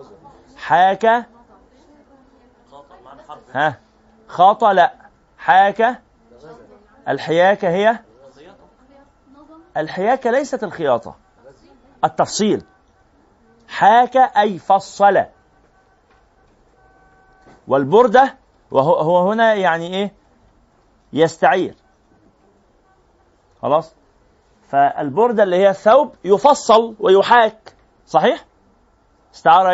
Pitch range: 175-235 Hz